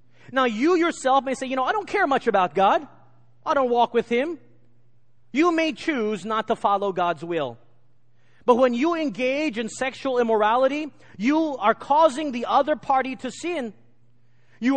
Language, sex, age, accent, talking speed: English, male, 30-49, American, 170 wpm